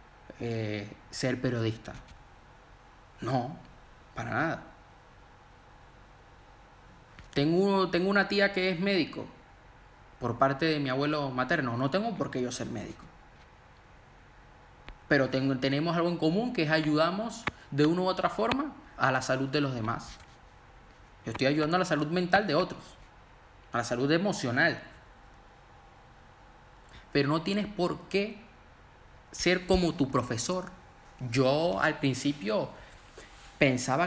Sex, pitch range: male, 125-160 Hz